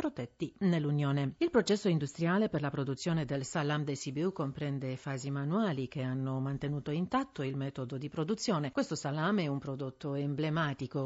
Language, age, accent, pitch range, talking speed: Italian, 40-59, native, 140-200 Hz, 155 wpm